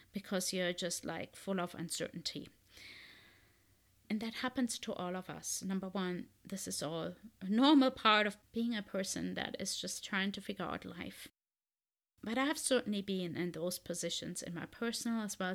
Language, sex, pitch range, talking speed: English, female, 180-225 Hz, 180 wpm